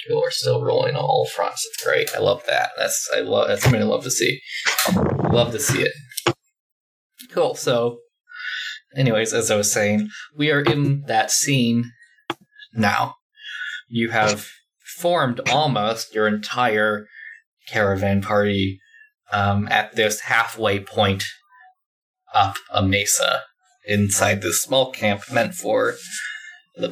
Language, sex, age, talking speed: English, male, 20-39, 135 wpm